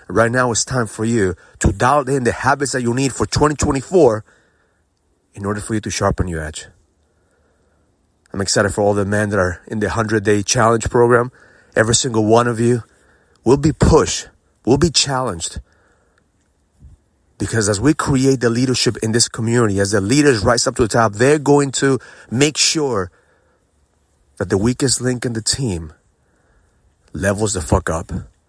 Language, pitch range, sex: English, 95-120 Hz, male